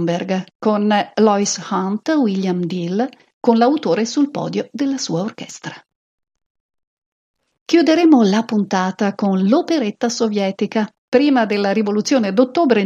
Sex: female